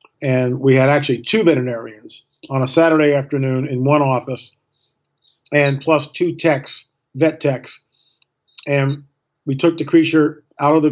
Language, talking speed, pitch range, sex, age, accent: English, 150 wpm, 145-175 Hz, male, 50-69, American